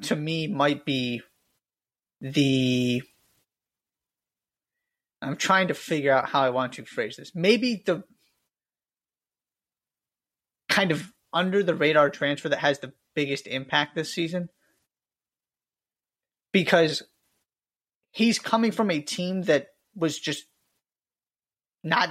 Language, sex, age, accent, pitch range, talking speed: English, male, 30-49, American, 140-185 Hz, 105 wpm